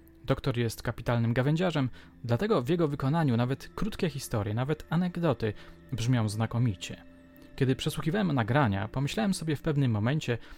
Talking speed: 130 wpm